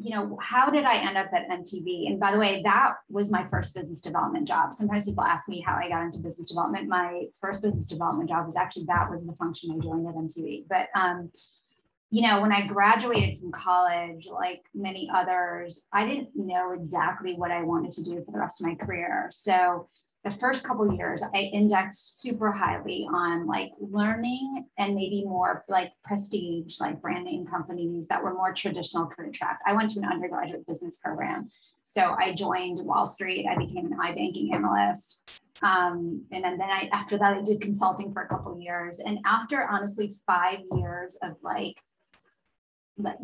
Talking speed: 195 wpm